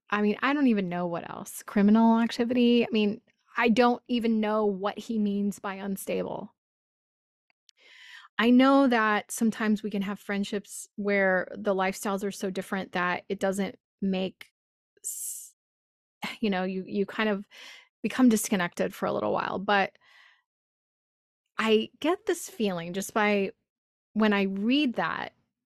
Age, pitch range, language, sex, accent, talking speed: 20-39, 190-225 Hz, English, female, American, 145 wpm